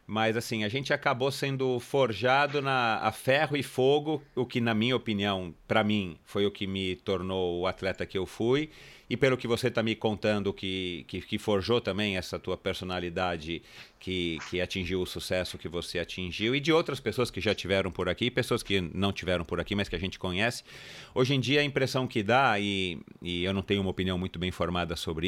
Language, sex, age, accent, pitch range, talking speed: Portuguese, male, 40-59, Brazilian, 95-130 Hz, 210 wpm